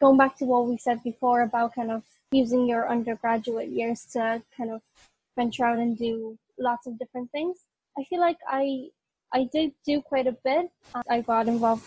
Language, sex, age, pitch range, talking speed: English, female, 10-29, 235-270 Hz, 190 wpm